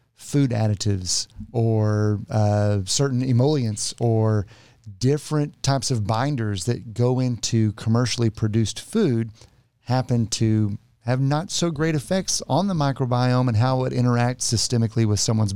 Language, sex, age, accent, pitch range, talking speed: English, male, 40-59, American, 110-140 Hz, 130 wpm